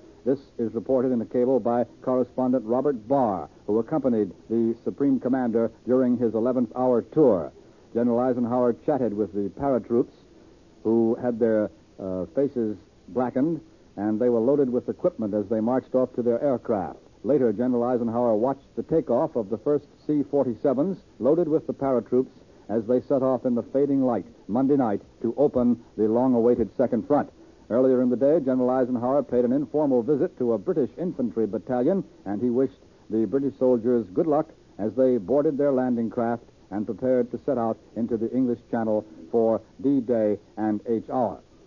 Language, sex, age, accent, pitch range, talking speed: English, male, 60-79, American, 115-130 Hz, 170 wpm